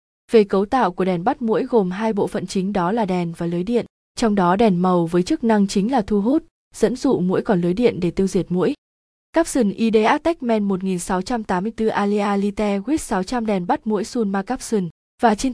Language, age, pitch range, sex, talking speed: Vietnamese, 20-39, 185-235 Hz, female, 205 wpm